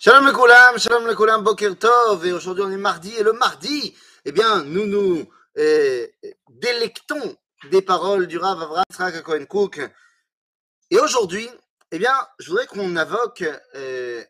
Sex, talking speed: male, 170 wpm